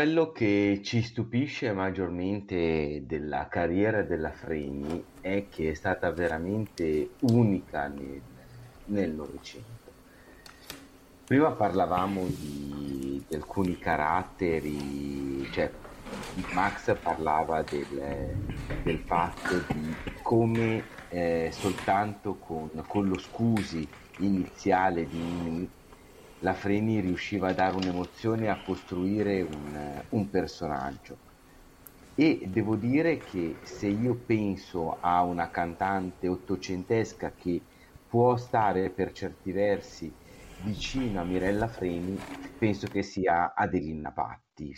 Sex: male